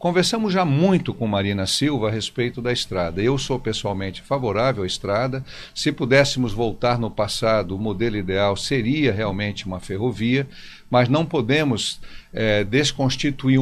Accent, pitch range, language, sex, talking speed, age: Brazilian, 110-140 Hz, Portuguese, male, 140 wpm, 50-69